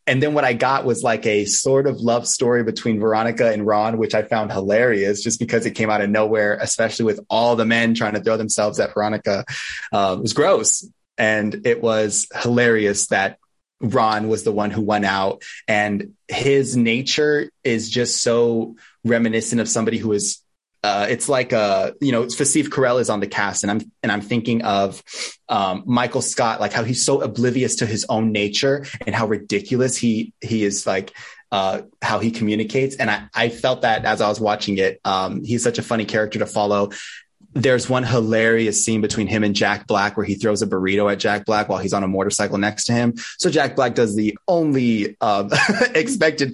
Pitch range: 105-140 Hz